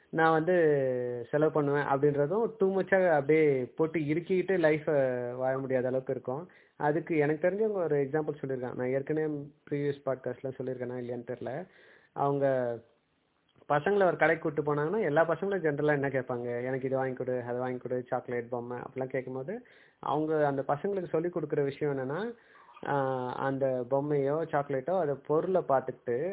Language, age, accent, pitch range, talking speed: Tamil, 20-39, native, 130-160 Hz, 145 wpm